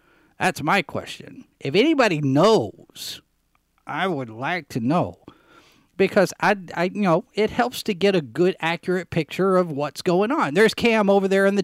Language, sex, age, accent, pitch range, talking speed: English, male, 40-59, American, 150-200 Hz, 175 wpm